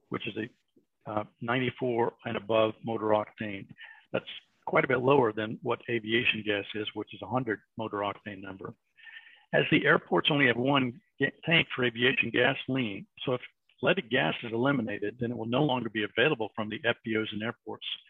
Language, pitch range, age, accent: English, 110-130 Hz, 50-69, American